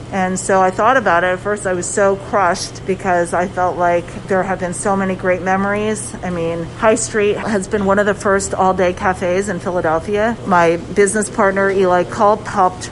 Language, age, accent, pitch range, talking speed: English, 40-59, American, 185-220 Hz, 205 wpm